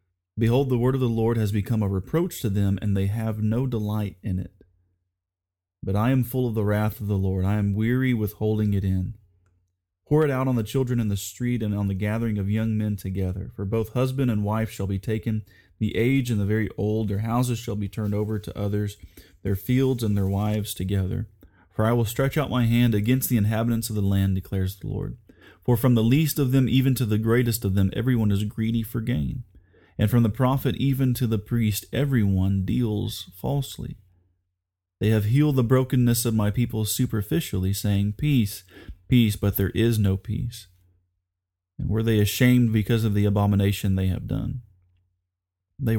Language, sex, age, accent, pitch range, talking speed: English, male, 30-49, American, 95-120 Hz, 200 wpm